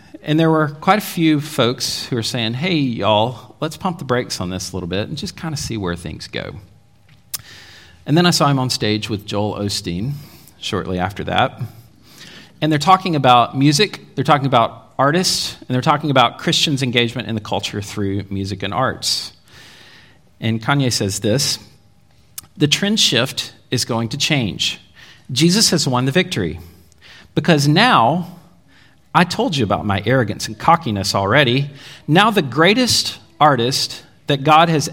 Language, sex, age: English, male, 40-59